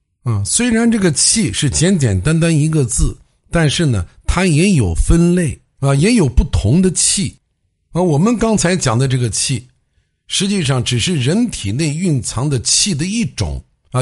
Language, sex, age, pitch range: Chinese, male, 60-79, 110-185 Hz